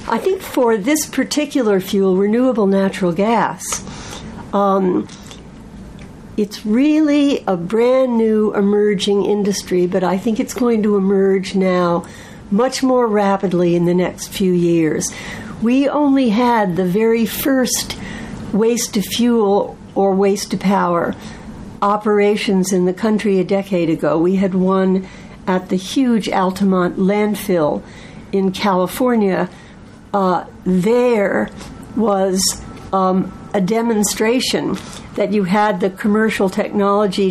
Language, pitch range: English, 190-230 Hz